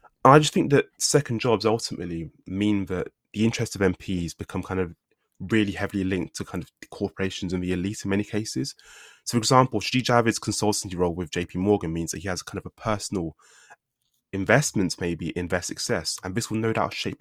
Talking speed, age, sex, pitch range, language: 200 wpm, 20-39, male, 90-120 Hz, English